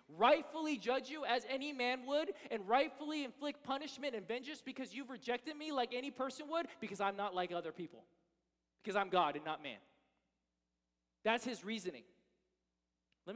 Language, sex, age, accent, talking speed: English, male, 20-39, American, 165 wpm